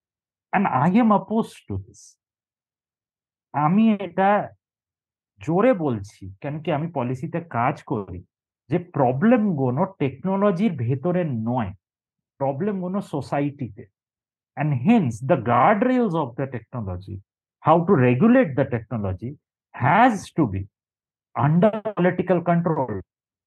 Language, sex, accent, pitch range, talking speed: Bengali, male, native, 120-185 Hz, 110 wpm